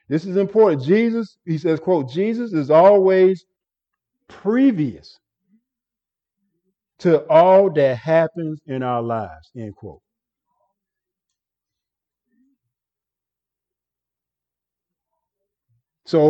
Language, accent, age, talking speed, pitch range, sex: English, American, 50-69, 75 wpm, 120-175 Hz, male